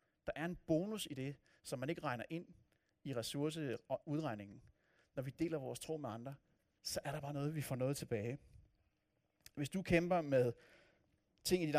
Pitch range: 135-165 Hz